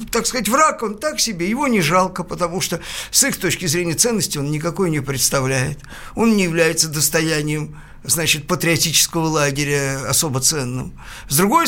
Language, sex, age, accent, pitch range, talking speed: Russian, male, 50-69, native, 155-230 Hz, 160 wpm